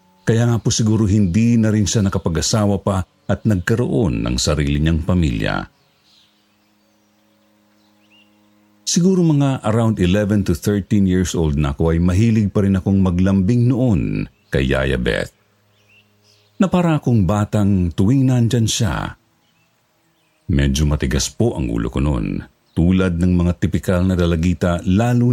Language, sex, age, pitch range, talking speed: Filipino, male, 50-69, 85-110 Hz, 135 wpm